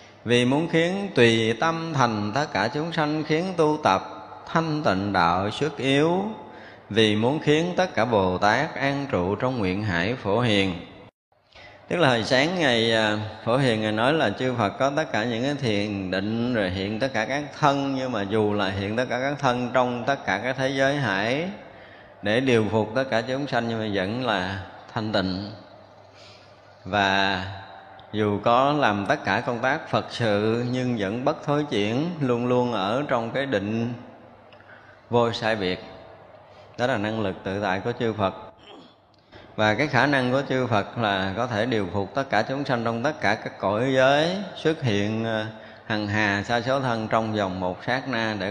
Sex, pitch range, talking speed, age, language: male, 100-130 Hz, 190 wpm, 20-39, Vietnamese